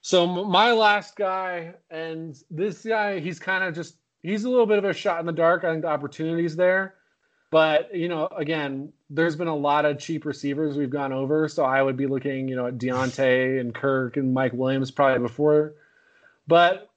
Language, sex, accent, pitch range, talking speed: English, male, American, 145-190 Hz, 200 wpm